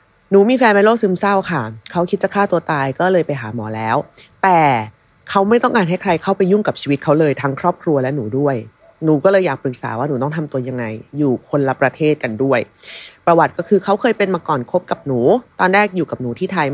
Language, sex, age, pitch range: Thai, female, 30-49, 140-215 Hz